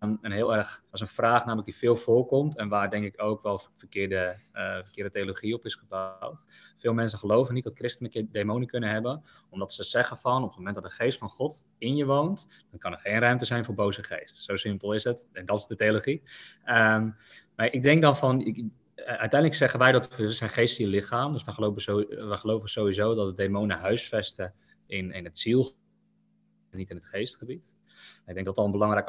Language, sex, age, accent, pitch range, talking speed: English, male, 20-39, Dutch, 105-125 Hz, 220 wpm